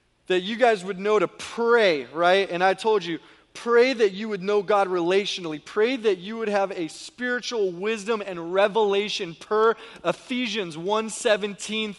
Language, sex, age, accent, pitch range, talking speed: English, male, 20-39, American, 205-265 Hz, 160 wpm